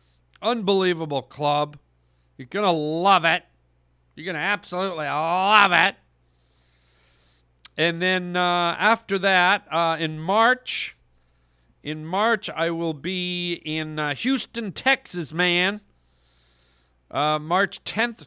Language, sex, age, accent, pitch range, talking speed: English, male, 40-59, American, 115-190 Hz, 110 wpm